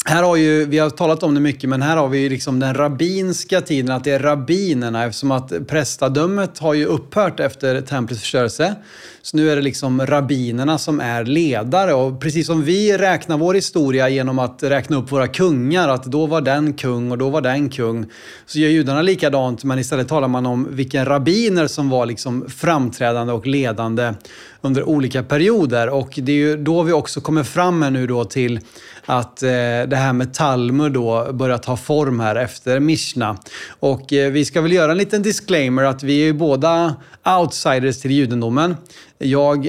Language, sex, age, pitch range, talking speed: Swedish, male, 30-49, 125-155 Hz, 190 wpm